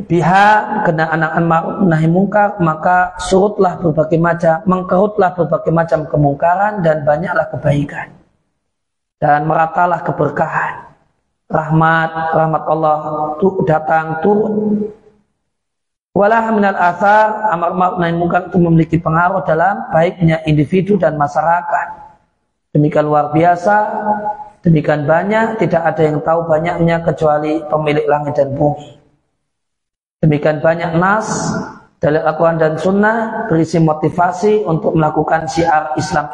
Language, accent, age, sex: Indonesian, native, 40-59, male